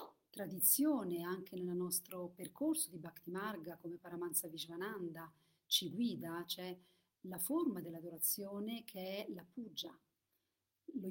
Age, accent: 40-59, native